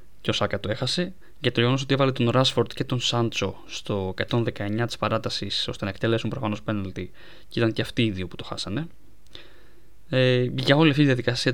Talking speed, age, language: 190 wpm, 20-39, Greek